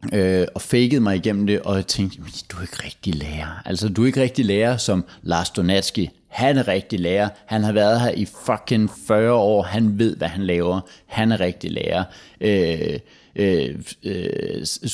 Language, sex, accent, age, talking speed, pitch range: Danish, male, native, 30-49, 190 wpm, 95-120 Hz